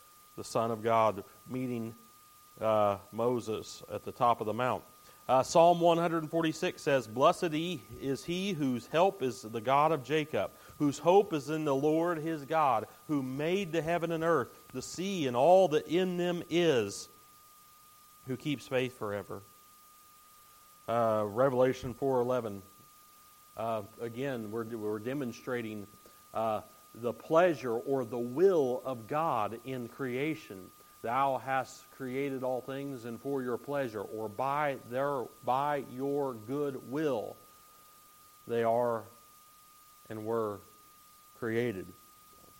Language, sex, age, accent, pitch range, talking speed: English, male, 40-59, American, 110-165 Hz, 130 wpm